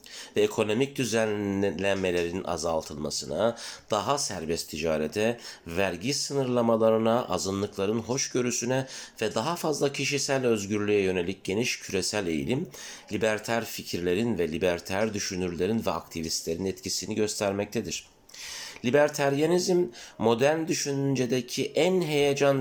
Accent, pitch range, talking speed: native, 95-120 Hz, 90 wpm